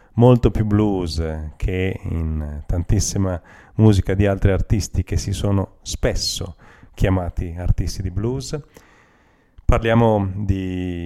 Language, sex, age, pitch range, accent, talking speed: Italian, male, 40-59, 90-105 Hz, native, 110 wpm